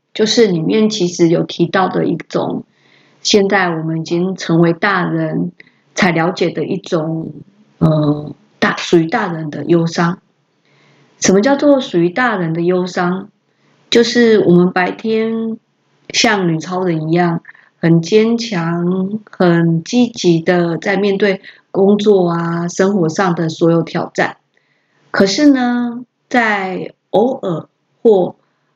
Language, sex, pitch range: Chinese, female, 170-215 Hz